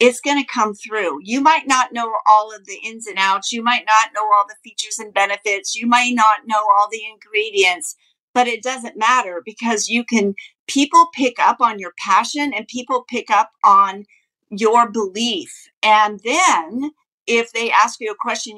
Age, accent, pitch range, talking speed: 50-69, American, 210-260 Hz, 190 wpm